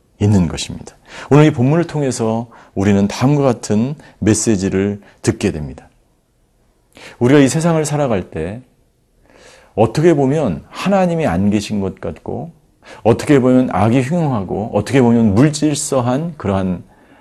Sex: male